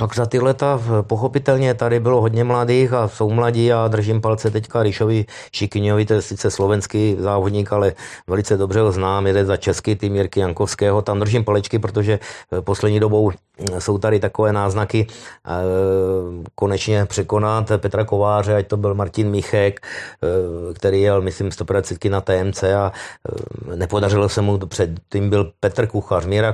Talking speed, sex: 155 wpm, male